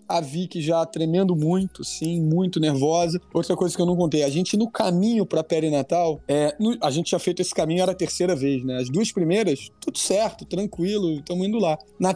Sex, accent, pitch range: male, Brazilian, 150-185 Hz